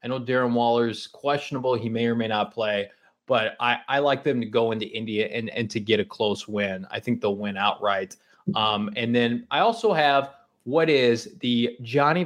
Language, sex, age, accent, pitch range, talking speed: English, male, 20-39, American, 110-135 Hz, 205 wpm